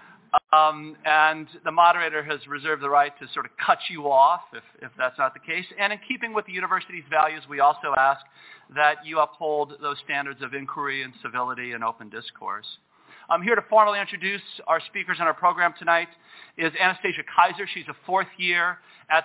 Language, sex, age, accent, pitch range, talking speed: English, male, 40-59, American, 140-175 Hz, 190 wpm